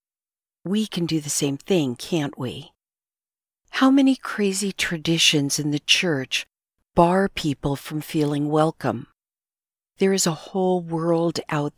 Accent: American